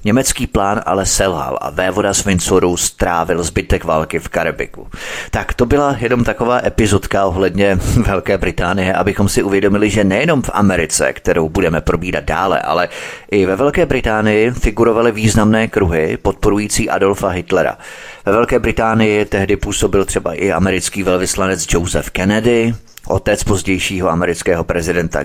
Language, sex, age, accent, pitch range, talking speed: Czech, male, 30-49, native, 95-115 Hz, 140 wpm